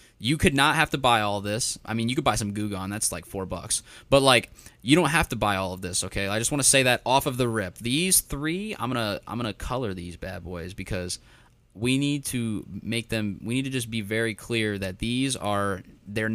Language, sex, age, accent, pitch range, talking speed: English, male, 20-39, American, 100-125 Hz, 255 wpm